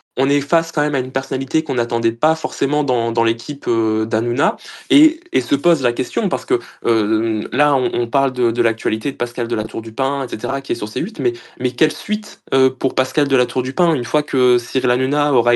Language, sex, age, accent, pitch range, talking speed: French, male, 20-39, French, 120-140 Hz, 235 wpm